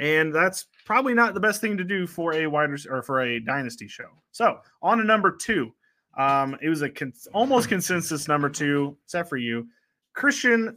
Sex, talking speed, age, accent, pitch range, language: male, 195 wpm, 20-39, American, 135-175 Hz, English